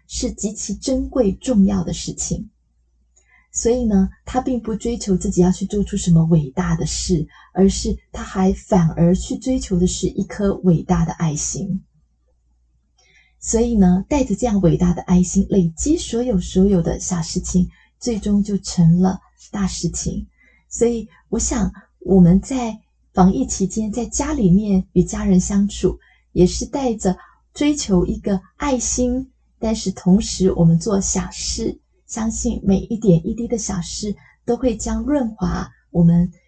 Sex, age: female, 20-39